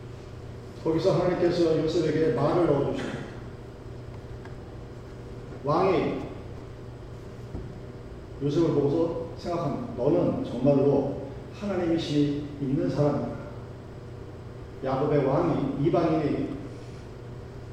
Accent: native